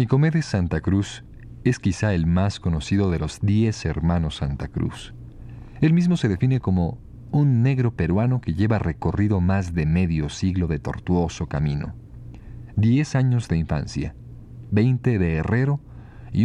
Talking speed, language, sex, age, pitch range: 145 wpm, Spanish, male, 40-59, 85-120 Hz